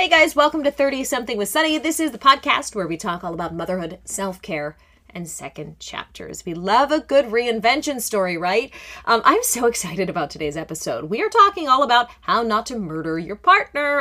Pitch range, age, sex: 180-250 Hz, 30-49, female